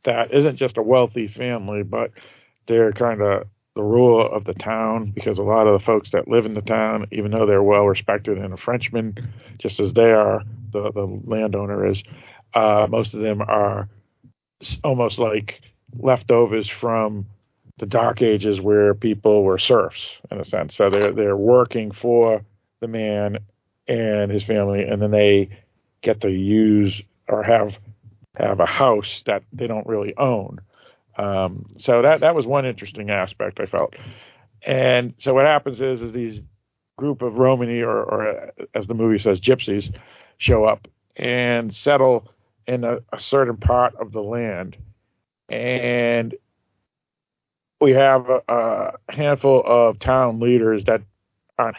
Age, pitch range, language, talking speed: 50-69, 105-120 Hz, English, 160 wpm